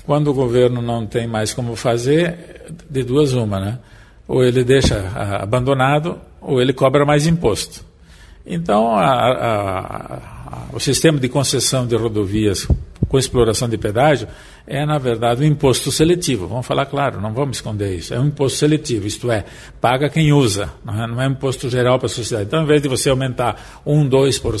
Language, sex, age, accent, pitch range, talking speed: Portuguese, male, 50-69, Brazilian, 115-145 Hz, 175 wpm